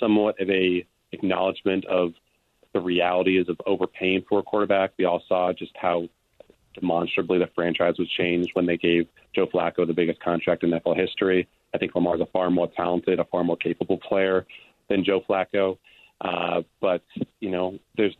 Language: English